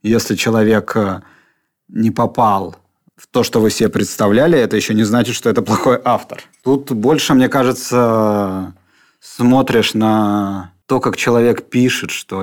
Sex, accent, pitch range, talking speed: male, native, 100-120 Hz, 140 wpm